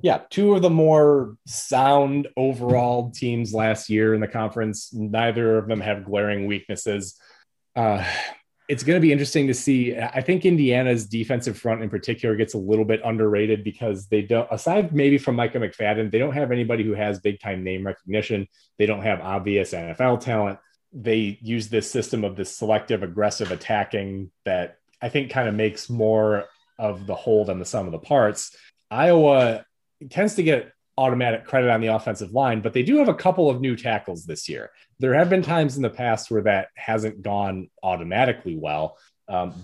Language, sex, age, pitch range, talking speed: English, male, 30-49, 100-130 Hz, 185 wpm